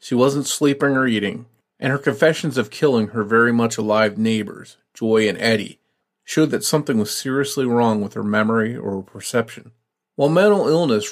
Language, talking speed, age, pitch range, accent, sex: English, 180 wpm, 40-59, 110-140 Hz, American, male